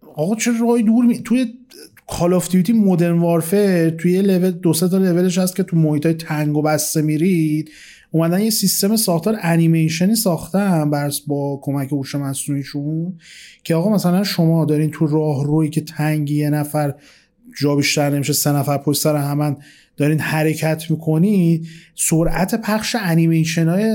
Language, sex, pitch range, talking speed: Persian, male, 145-180 Hz, 145 wpm